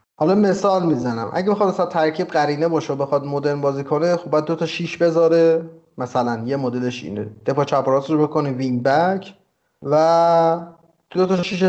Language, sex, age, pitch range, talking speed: Persian, male, 30-49, 120-160 Hz, 160 wpm